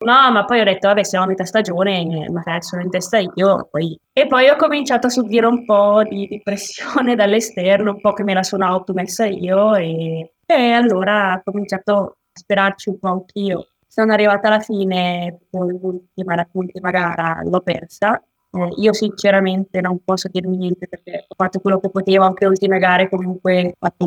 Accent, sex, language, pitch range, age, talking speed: native, female, Italian, 180-210 Hz, 20-39, 190 wpm